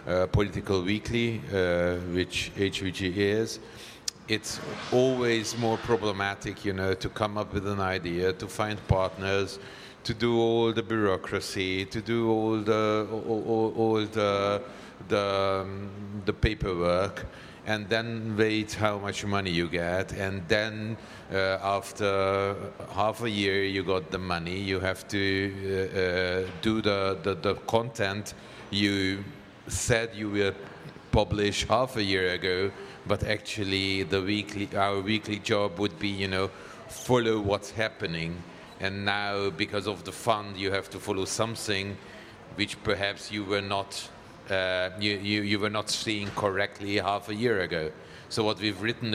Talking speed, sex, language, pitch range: 150 wpm, male, French, 95-110 Hz